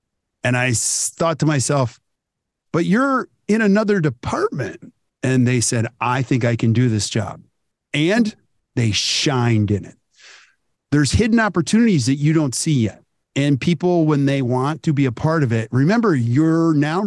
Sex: male